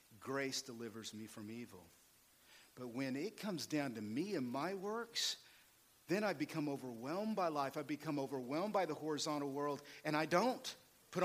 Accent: American